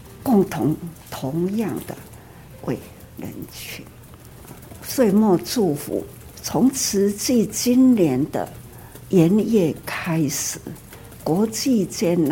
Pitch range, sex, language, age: 165-240 Hz, female, Chinese, 60-79